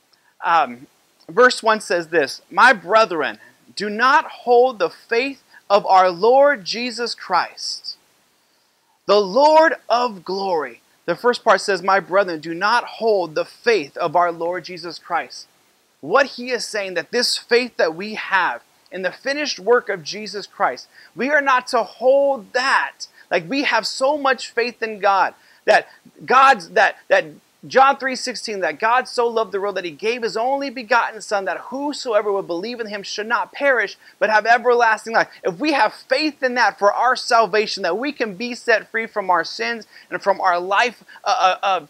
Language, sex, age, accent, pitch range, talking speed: English, male, 30-49, American, 200-255 Hz, 175 wpm